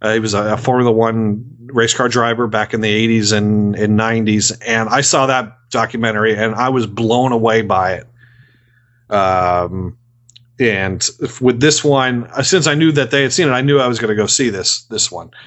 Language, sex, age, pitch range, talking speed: English, male, 40-59, 110-135 Hz, 215 wpm